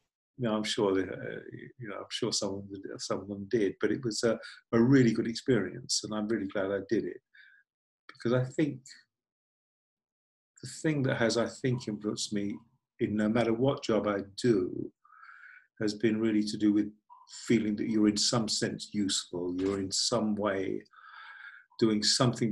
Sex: male